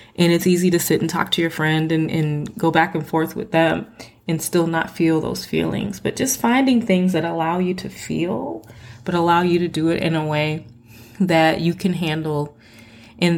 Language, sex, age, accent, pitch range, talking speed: English, female, 20-39, American, 155-175 Hz, 210 wpm